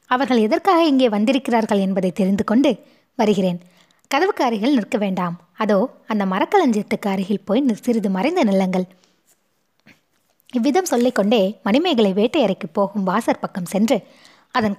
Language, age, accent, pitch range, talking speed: Tamil, 20-39, native, 195-265 Hz, 110 wpm